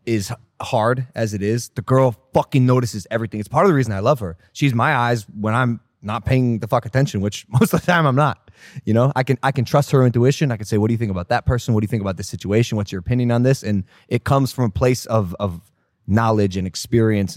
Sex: male